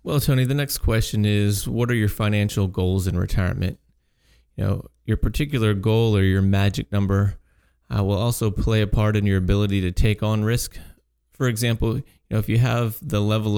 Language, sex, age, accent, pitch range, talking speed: English, male, 30-49, American, 100-110 Hz, 195 wpm